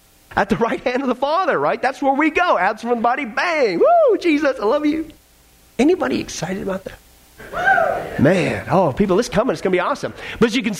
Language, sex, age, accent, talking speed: English, male, 30-49, American, 230 wpm